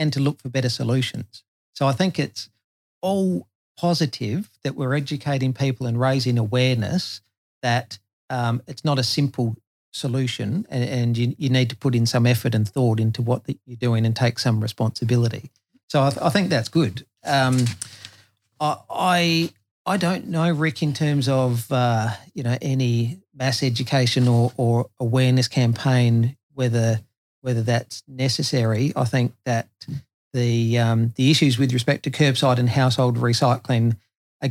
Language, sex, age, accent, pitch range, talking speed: English, male, 40-59, Australian, 115-135 Hz, 165 wpm